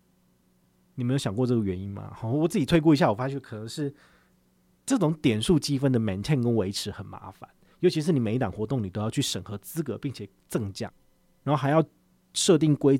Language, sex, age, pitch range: Chinese, male, 30-49, 110-145 Hz